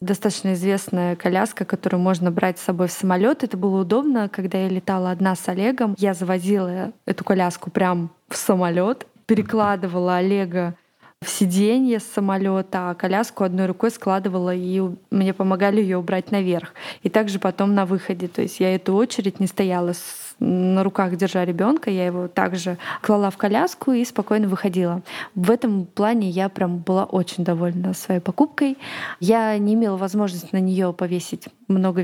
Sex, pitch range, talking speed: female, 185-215 Hz, 165 wpm